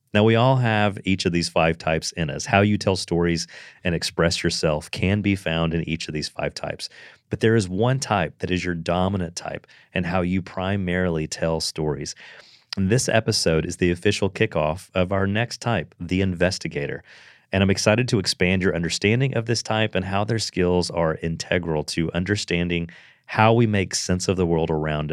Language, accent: English, American